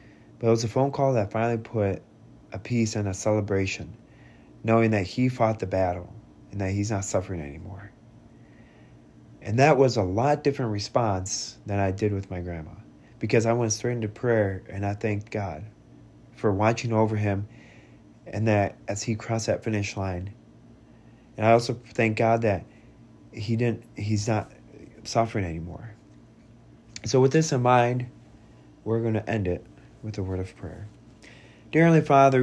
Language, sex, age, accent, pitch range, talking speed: English, male, 30-49, American, 95-120 Hz, 170 wpm